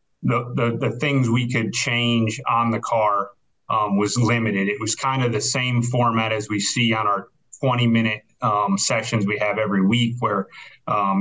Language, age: English, 30-49